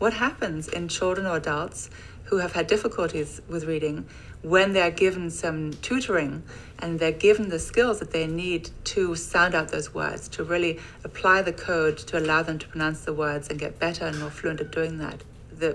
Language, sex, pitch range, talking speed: English, female, 155-175 Hz, 200 wpm